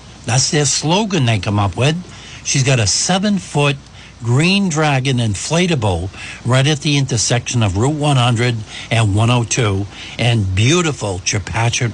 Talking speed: 130 wpm